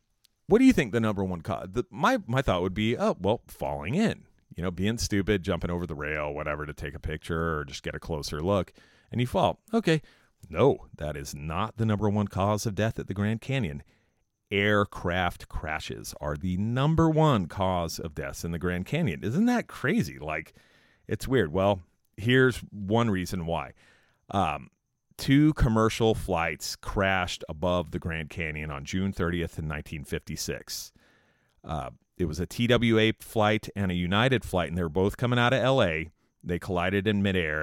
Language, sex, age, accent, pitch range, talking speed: English, male, 40-59, American, 85-115 Hz, 180 wpm